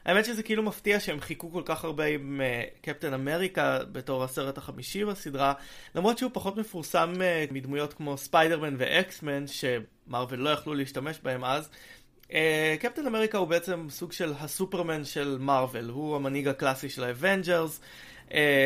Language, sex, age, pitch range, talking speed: Hebrew, male, 20-39, 135-170 Hz, 155 wpm